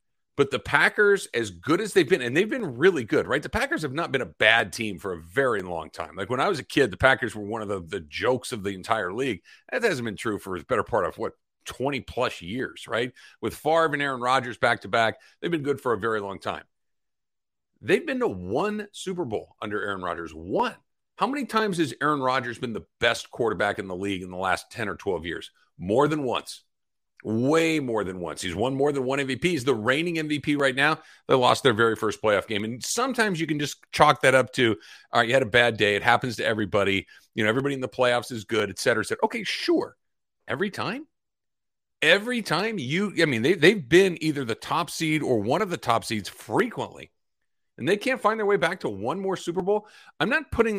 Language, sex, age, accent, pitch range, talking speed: English, male, 50-69, American, 120-190 Hz, 235 wpm